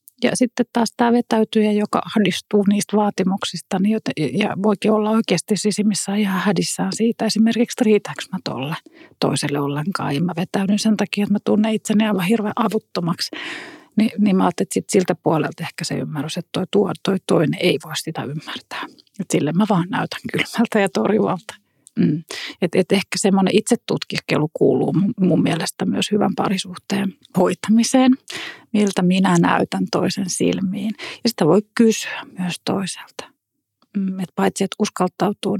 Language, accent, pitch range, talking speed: Finnish, native, 185-220 Hz, 155 wpm